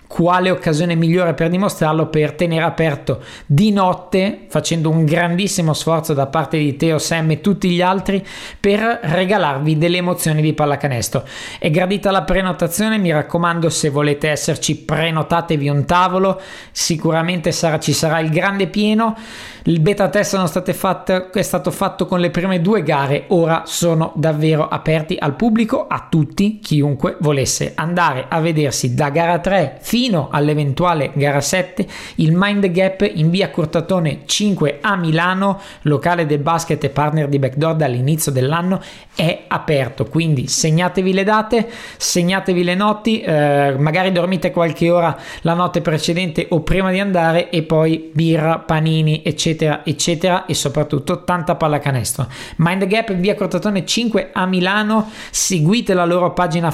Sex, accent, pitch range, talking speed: male, native, 155-185 Hz, 150 wpm